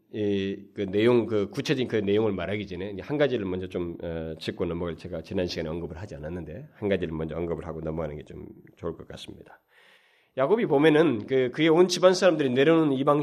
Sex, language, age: male, Korean, 40-59